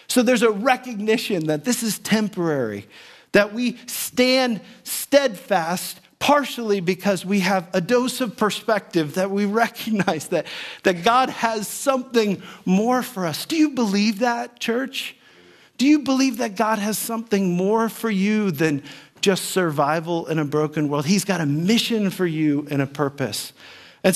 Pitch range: 160-210 Hz